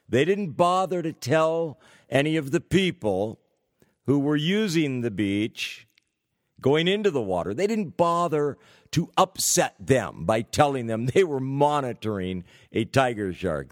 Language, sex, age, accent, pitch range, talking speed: English, male, 50-69, American, 110-150 Hz, 145 wpm